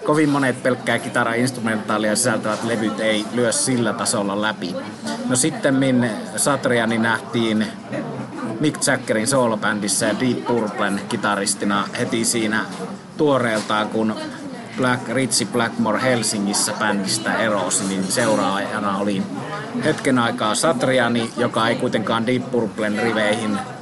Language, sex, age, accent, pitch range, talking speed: Finnish, male, 30-49, native, 105-125 Hz, 105 wpm